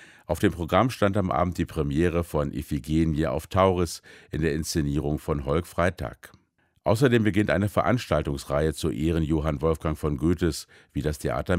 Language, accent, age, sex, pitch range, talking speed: German, German, 50-69, male, 75-90 Hz, 160 wpm